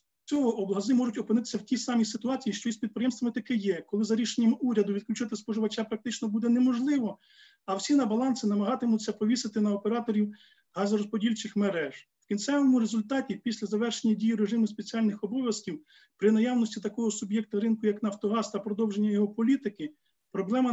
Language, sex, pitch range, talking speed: Ukrainian, male, 205-235 Hz, 160 wpm